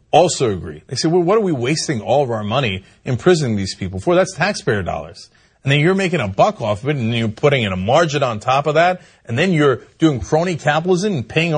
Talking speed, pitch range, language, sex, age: 245 wpm, 145-225 Hz, English, male, 40-59